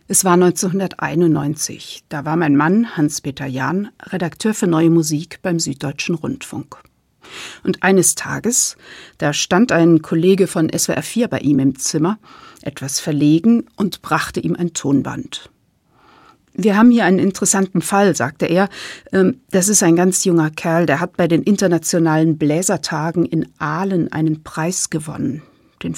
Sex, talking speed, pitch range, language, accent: female, 145 wpm, 155-195 Hz, German, German